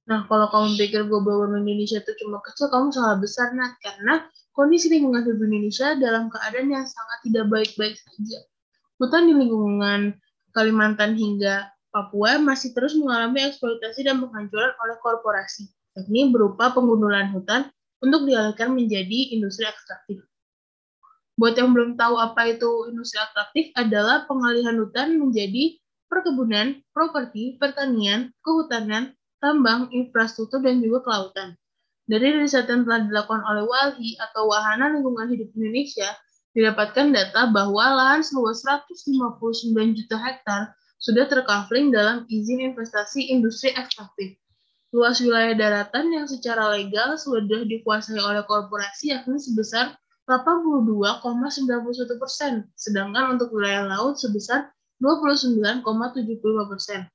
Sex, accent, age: female, native, 20-39